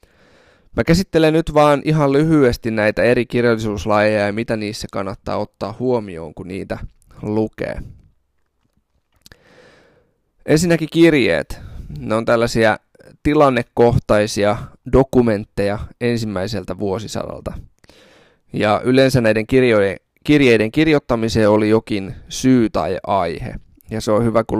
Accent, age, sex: native, 20-39, male